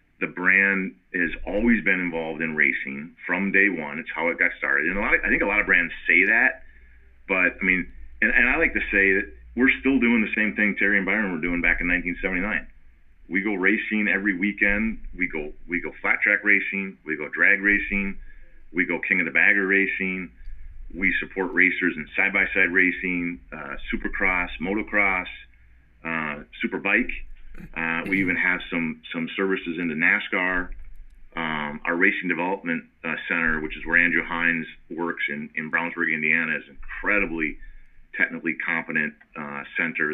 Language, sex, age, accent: English, male, 40-59, American